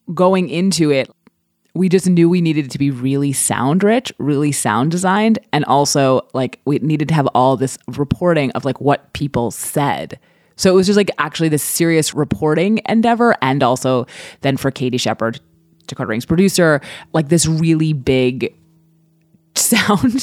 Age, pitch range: 20-39, 130-170 Hz